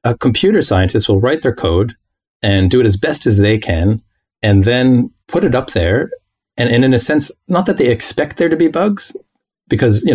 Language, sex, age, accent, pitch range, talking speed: English, male, 40-59, American, 100-125 Hz, 215 wpm